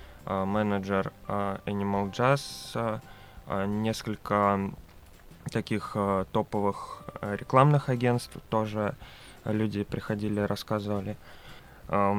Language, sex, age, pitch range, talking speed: Russian, male, 20-39, 95-110 Hz, 65 wpm